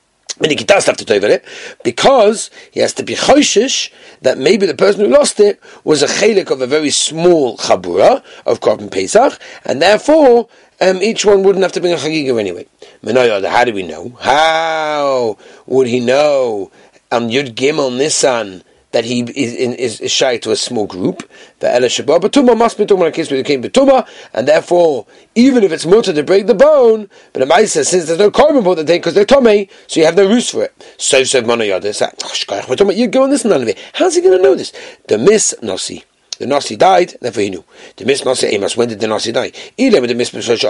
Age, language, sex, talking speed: 40-59, English, male, 215 wpm